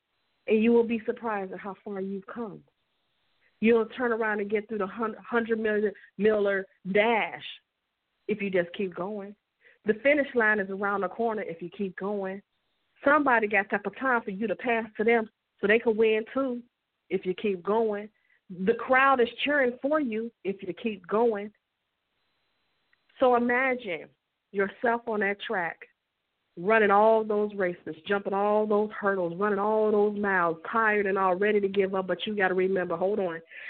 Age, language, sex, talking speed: 40-59, English, female, 180 wpm